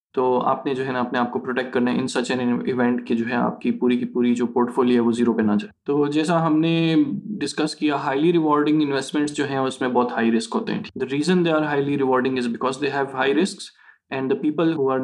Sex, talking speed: male, 65 wpm